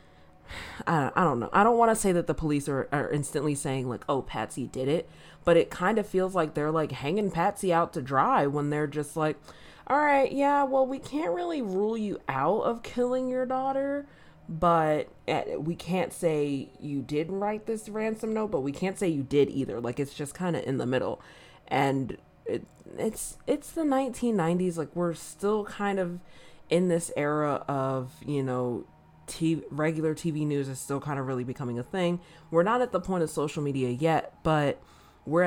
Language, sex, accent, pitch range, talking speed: English, female, American, 135-175 Hz, 195 wpm